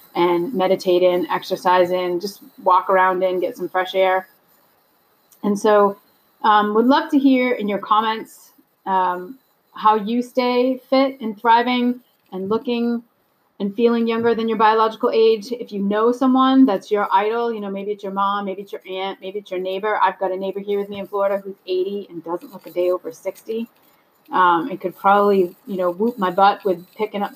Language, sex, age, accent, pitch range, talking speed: English, female, 30-49, American, 185-230 Hz, 195 wpm